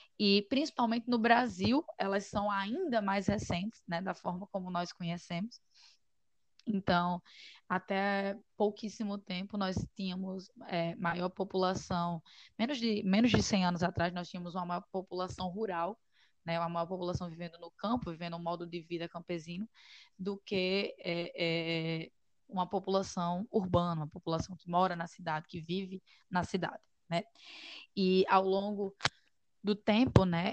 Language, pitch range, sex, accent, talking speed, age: Portuguese, 175-210 Hz, female, Brazilian, 145 wpm, 10-29